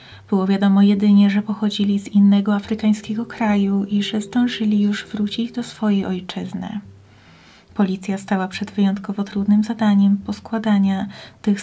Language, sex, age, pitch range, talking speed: Polish, female, 30-49, 200-215 Hz, 130 wpm